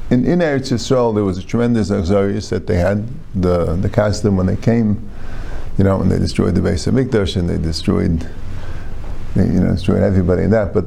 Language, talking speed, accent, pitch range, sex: English, 205 wpm, American, 95-130 Hz, male